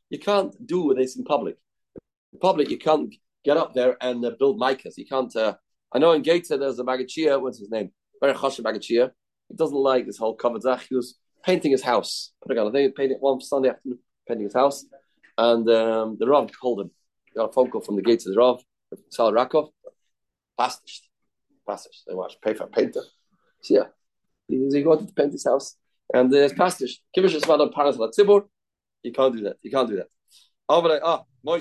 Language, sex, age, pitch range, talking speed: English, male, 30-49, 125-175 Hz, 185 wpm